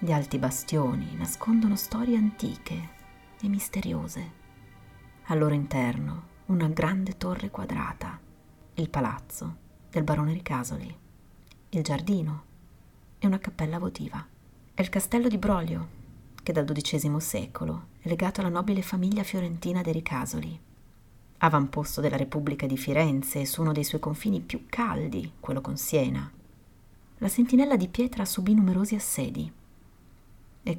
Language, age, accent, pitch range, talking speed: Italian, 30-49, native, 135-180 Hz, 130 wpm